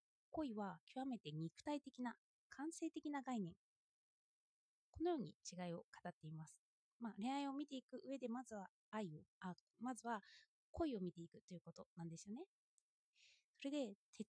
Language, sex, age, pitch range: Japanese, female, 20-39, 195-290 Hz